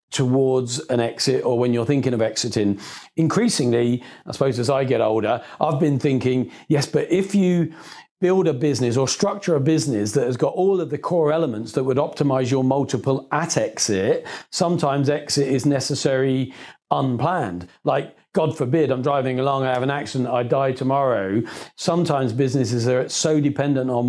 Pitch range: 125-145 Hz